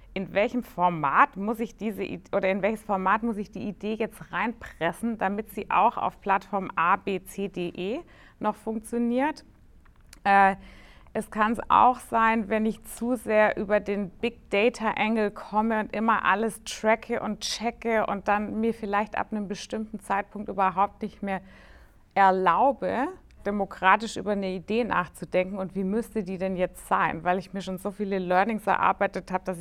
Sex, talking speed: female, 170 wpm